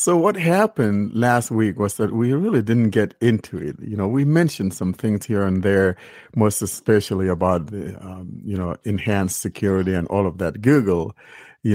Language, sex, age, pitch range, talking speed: English, male, 50-69, 95-115 Hz, 190 wpm